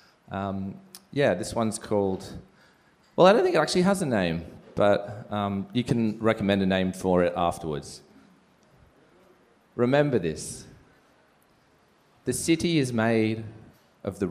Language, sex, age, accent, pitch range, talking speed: English, male, 30-49, Australian, 100-120 Hz, 135 wpm